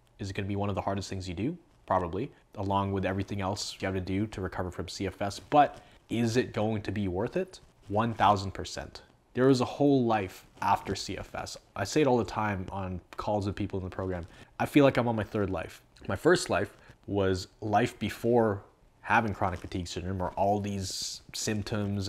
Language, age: English, 20-39